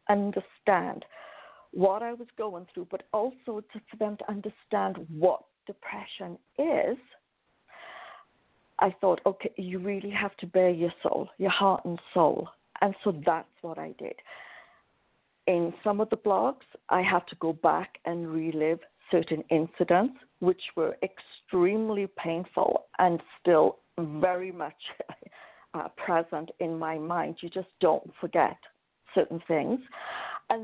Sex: female